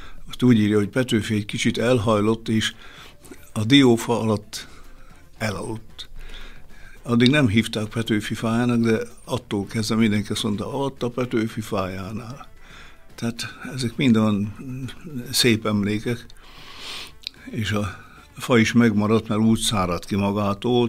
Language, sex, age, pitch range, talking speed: Hungarian, male, 60-79, 100-120 Hz, 125 wpm